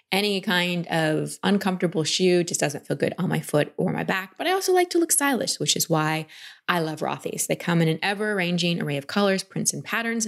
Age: 20-39